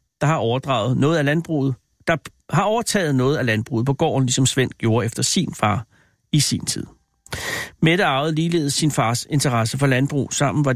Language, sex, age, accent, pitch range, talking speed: Danish, male, 60-79, native, 125-160 Hz, 185 wpm